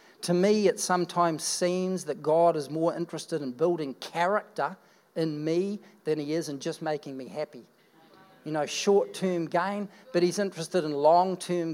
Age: 50-69